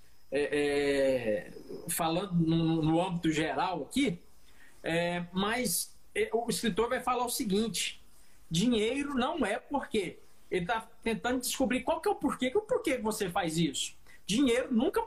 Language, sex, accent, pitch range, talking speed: Portuguese, male, Brazilian, 195-250 Hz, 160 wpm